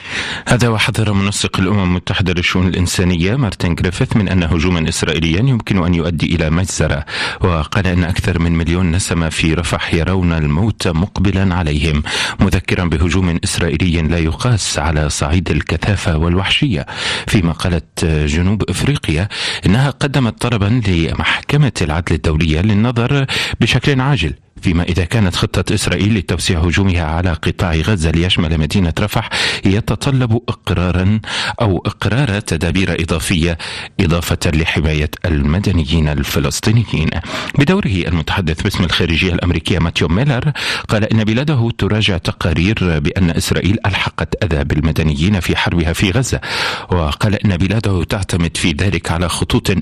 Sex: male